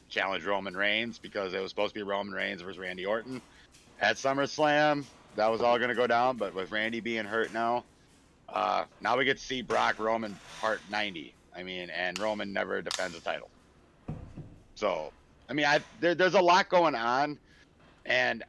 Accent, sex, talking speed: American, male, 185 wpm